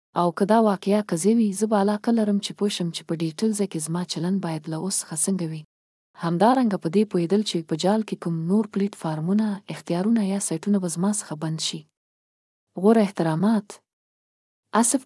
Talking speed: 150 wpm